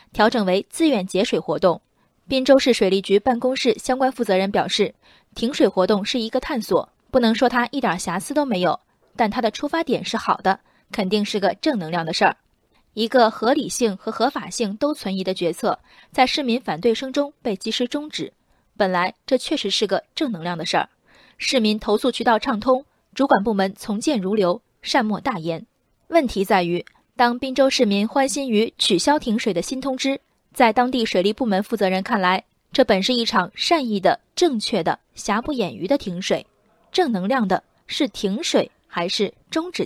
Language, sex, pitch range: Chinese, female, 195-265 Hz